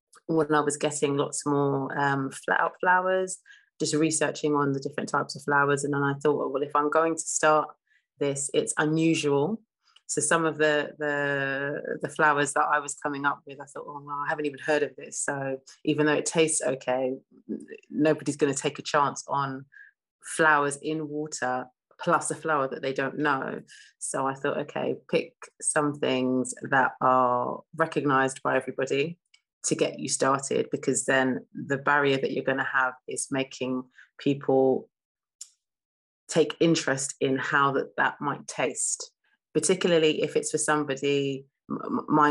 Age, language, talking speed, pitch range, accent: 30-49, English, 165 wpm, 135-155 Hz, British